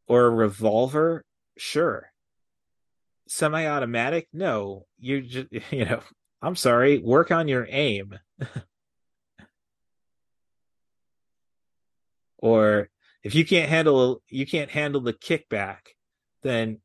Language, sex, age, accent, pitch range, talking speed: English, male, 30-49, American, 105-125 Hz, 95 wpm